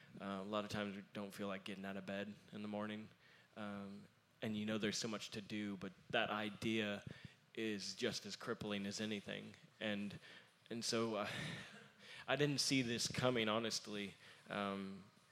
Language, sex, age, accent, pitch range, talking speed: English, male, 20-39, American, 105-115 Hz, 175 wpm